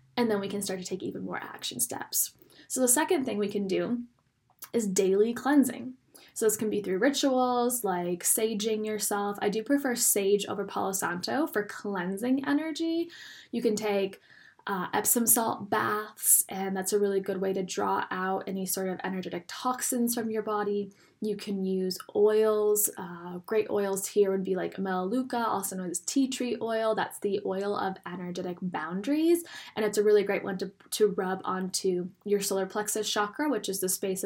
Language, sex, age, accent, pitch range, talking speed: English, female, 10-29, American, 190-225 Hz, 185 wpm